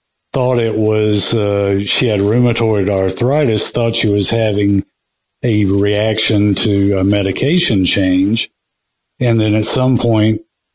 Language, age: English, 50-69